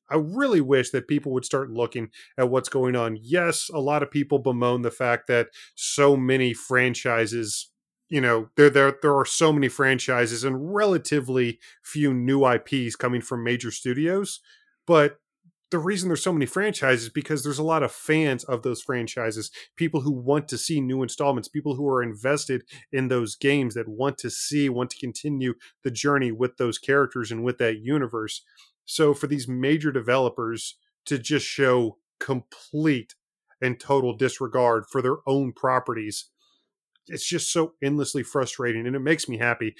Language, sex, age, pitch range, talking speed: English, male, 30-49, 120-145 Hz, 175 wpm